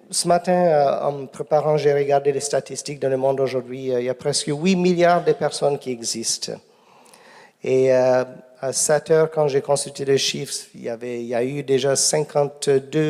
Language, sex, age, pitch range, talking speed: French, male, 50-69, 145-215 Hz, 180 wpm